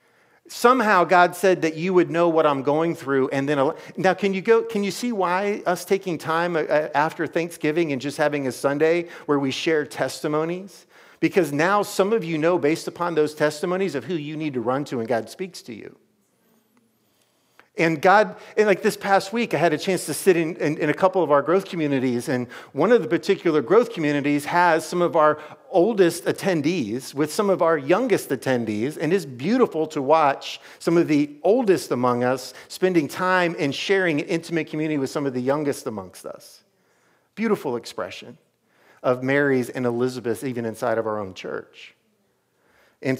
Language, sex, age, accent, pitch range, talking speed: English, male, 50-69, American, 140-180 Hz, 190 wpm